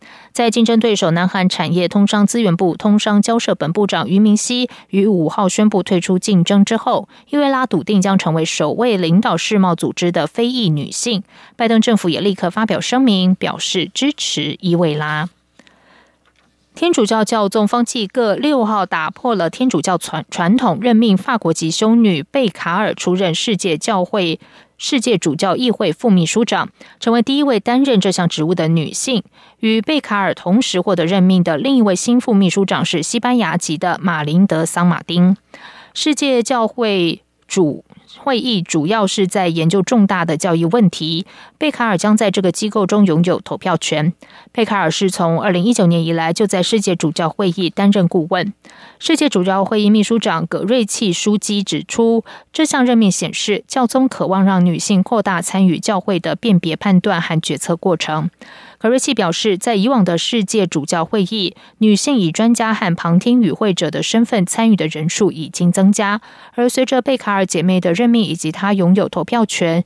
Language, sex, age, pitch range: Chinese, female, 20-39, 175-225 Hz